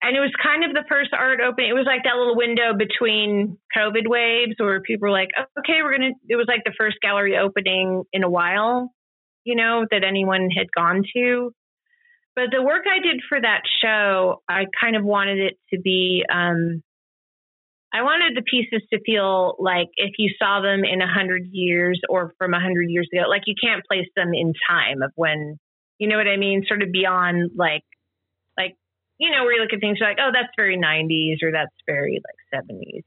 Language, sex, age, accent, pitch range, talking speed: English, female, 30-49, American, 180-235 Hz, 205 wpm